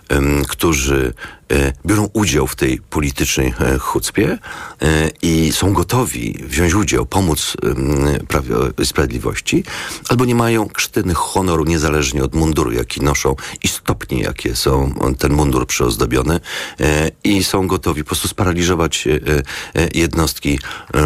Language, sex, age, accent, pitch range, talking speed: Polish, male, 40-59, native, 75-105 Hz, 130 wpm